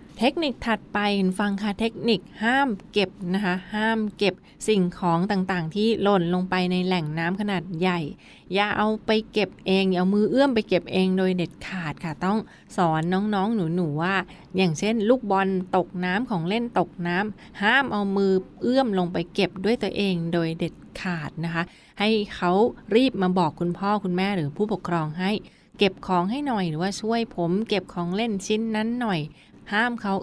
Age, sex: 20-39, female